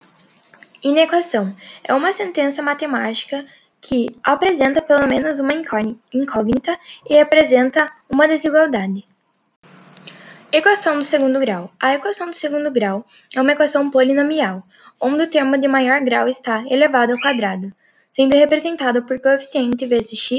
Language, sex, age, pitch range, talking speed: Portuguese, female, 10-29, 235-295 Hz, 125 wpm